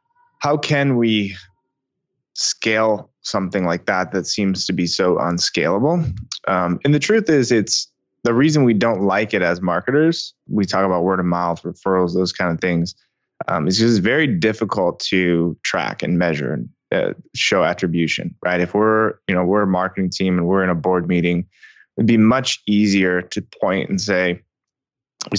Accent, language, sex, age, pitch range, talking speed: American, English, male, 20-39, 90-115 Hz, 175 wpm